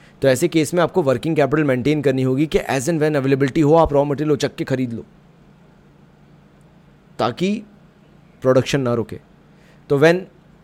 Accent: native